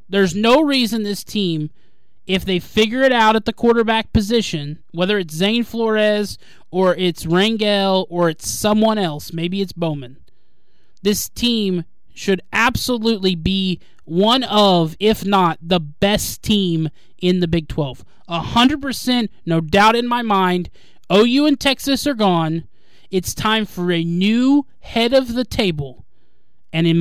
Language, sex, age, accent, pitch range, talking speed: English, male, 20-39, American, 175-225 Hz, 145 wpm